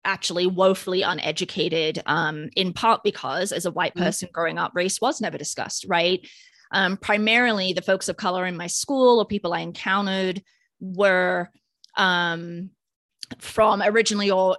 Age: 20-39